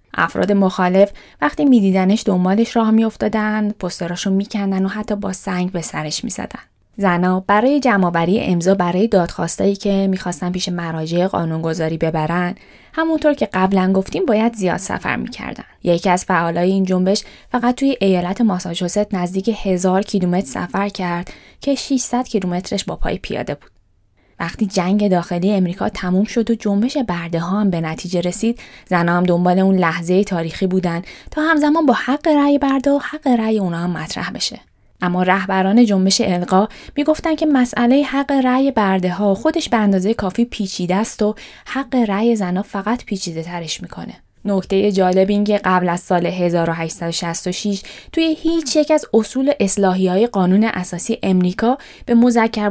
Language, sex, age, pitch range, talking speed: Persian, female, 20-39, 180-230 Hz, 155 wpm